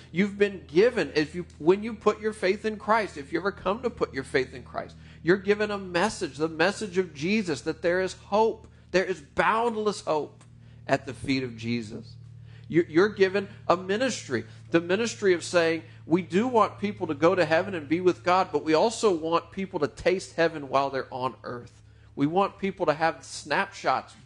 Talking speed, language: 200 wpm, English